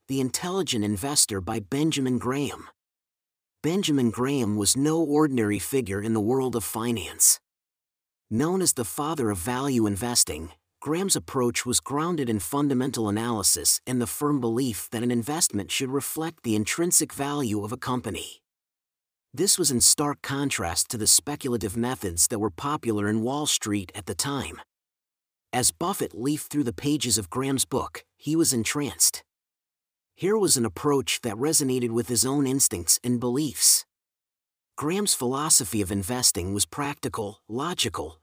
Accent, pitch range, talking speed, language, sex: American, 110-145 Hz, 150 wpm, English, male